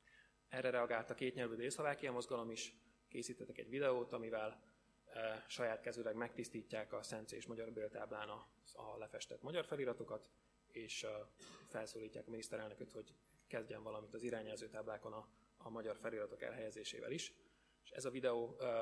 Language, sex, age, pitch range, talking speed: Hungarian, male, 20-39, 115-130 Hz, 130 wpm